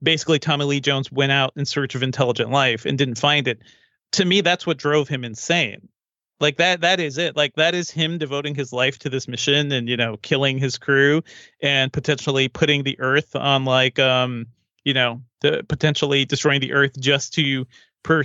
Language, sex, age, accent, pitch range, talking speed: English, male, 30-49, American, 135-155 Hz, 200 wpm